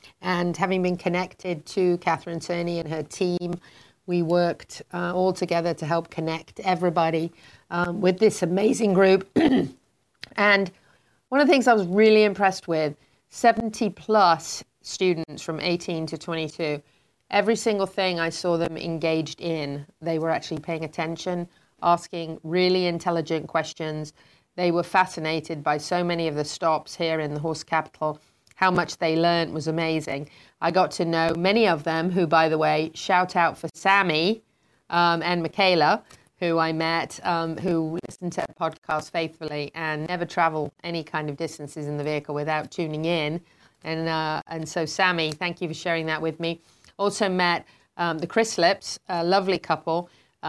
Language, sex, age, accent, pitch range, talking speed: English, female, 30-49, British, 160-180 Hz, 165 wpm